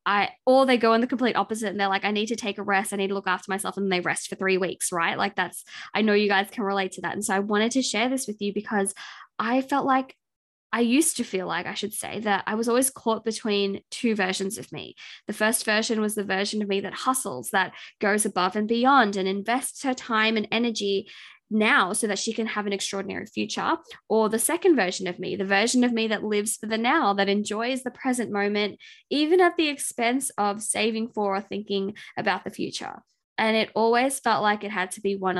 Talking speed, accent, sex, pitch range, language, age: 240 wpm, Australian, female, 195-240 Hz, English, 20-39